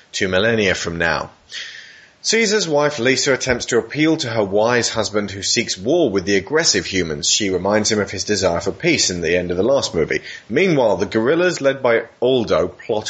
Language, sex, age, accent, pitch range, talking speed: English, male, 30-49, British, 100-145 Hz, 195 wpm